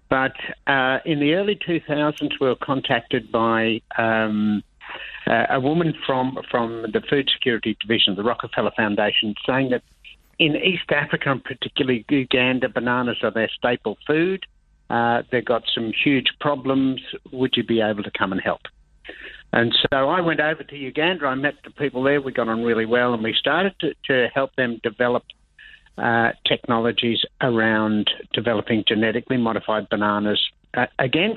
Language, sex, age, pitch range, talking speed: English, male, 60-79, 115-145 Hz, 160 wpm